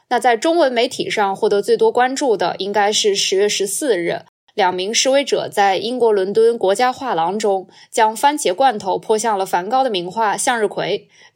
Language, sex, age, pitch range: Chinese, female, 20-39, 205-270 Hz